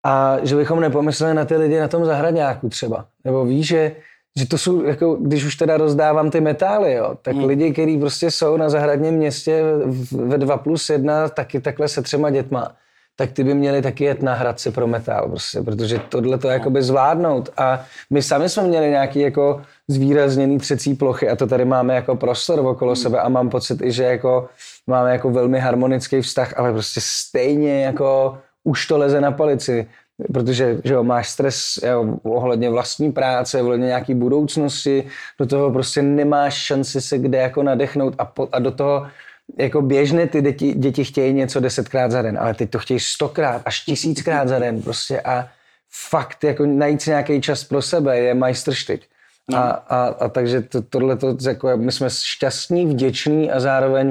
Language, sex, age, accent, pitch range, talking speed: Czech, male, 20-39, native, 125-145 Hz, 185 wpm